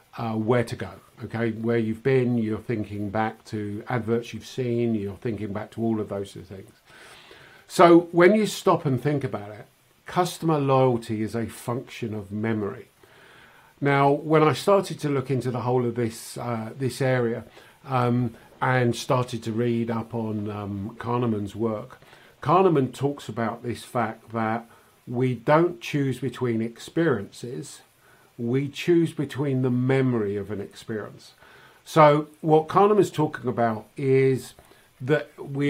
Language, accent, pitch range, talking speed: English, British, 115-140 Hz, 150 wpm